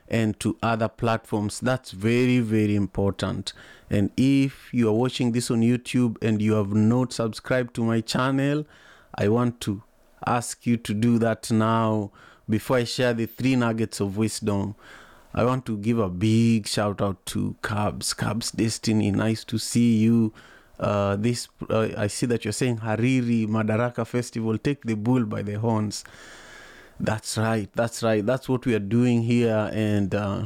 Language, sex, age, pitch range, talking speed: English, male, 30-49, 105-120 Hz, 170 wpm